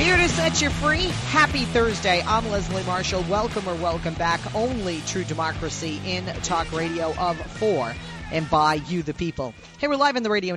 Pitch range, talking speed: 150-200 Hz, 185 wpm